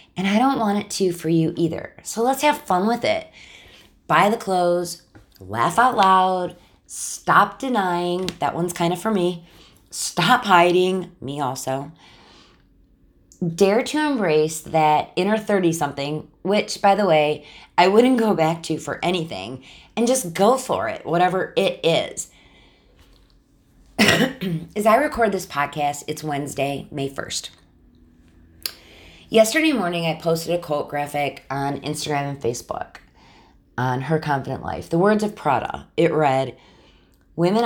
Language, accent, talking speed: English, American, 140 wpm